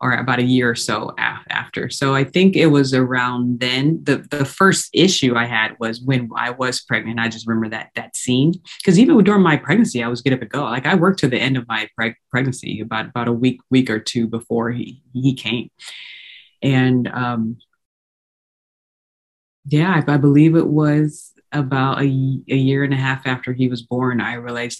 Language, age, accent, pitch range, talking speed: English, 20-39, American, 120-145 Hz, 205 wpm